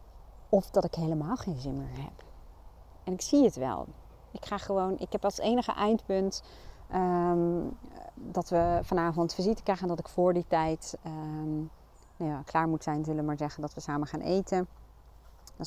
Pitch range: 155-195 Hz